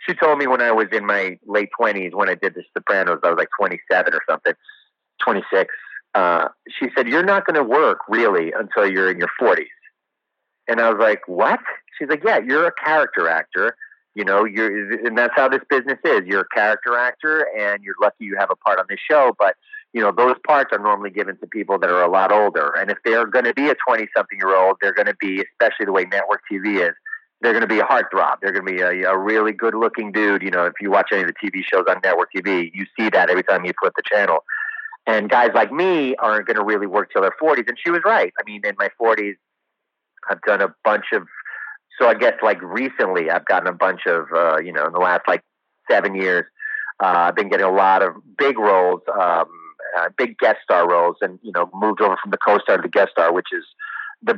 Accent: American